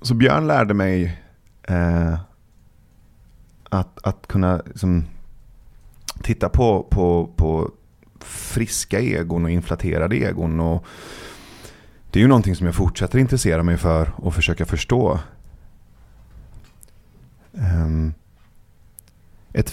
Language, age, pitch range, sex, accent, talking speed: Swedish, 30-49, 85-105 Hz, male, native, 105 wpm